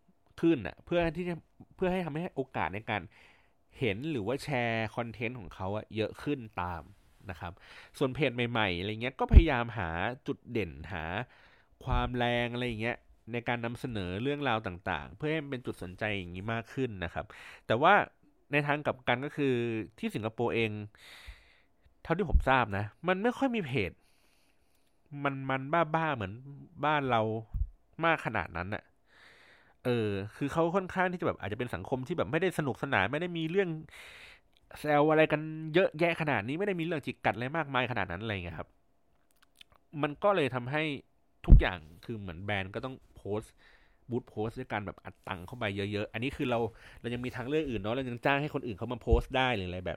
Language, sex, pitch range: Thai, male, 105-145 Hz